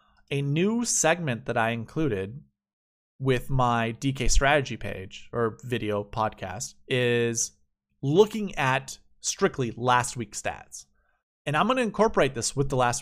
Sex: male